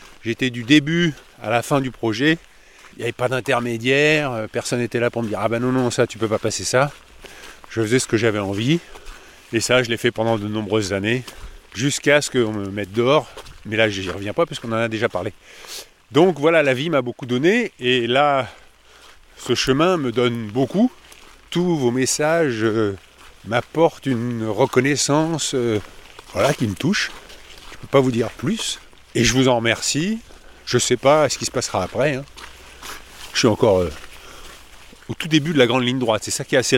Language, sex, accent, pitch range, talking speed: French, male, French, 110-140 Hz, 210 wpm